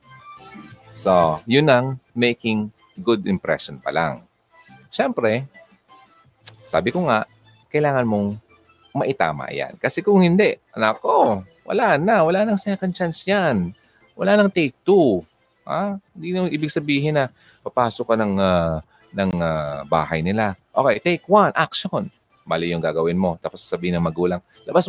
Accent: native